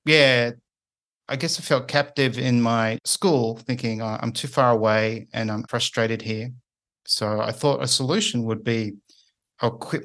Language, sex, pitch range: English, male, 110-125 Hz